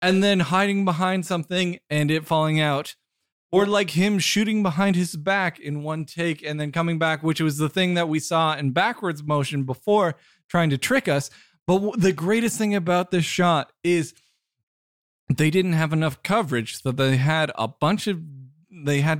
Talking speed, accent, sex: 185 wpm, American, male